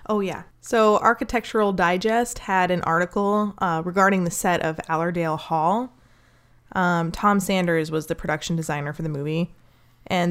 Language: English